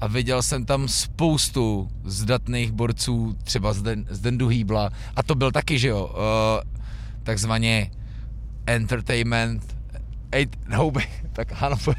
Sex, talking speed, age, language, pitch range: male, 130 wpm, 20-39, Czech, 110-135 Hz